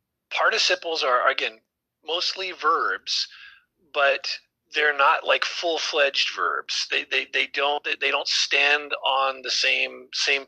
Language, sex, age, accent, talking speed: English, male, 40-59, American, 130 wpm